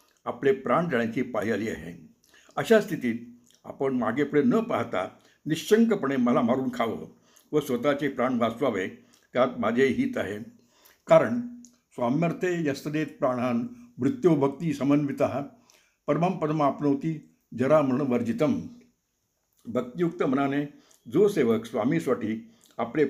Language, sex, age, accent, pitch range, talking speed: Marathi, male, 60-79, native, 130-205 Hz, 110 wpm